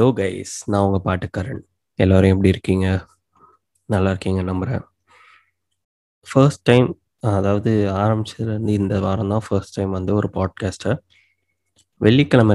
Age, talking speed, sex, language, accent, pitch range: 20-39, 110 wpm, male, Tamil, native, 95-110 Hz